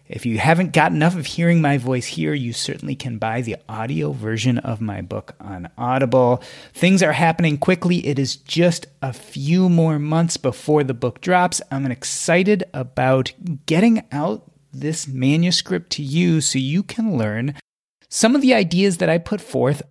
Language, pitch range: English, 130-175 Hz